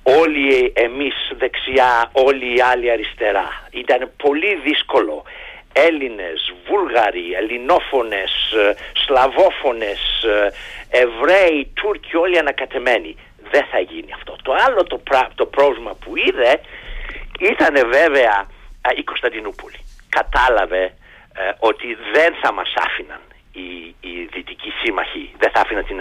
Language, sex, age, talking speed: Greek, male, 60-79, 110 wpm